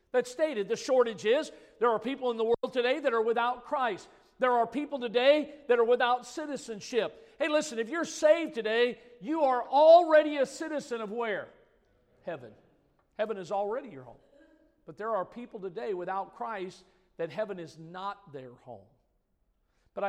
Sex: male